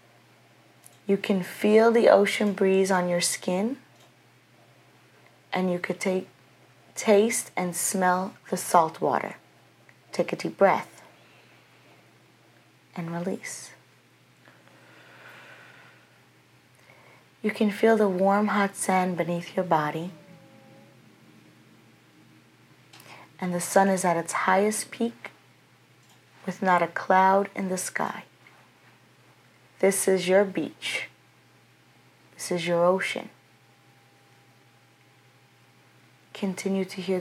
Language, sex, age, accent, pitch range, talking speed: English, female, 40-59, American, 175-200 Hz, 100 wpm